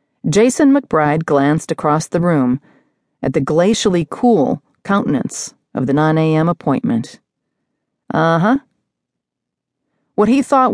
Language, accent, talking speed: English, American, 115 wpm